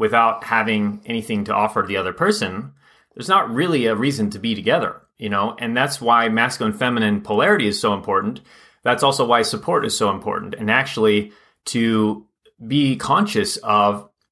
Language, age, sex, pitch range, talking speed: English, 30-49, male, 110-135 Hz, 170 wpm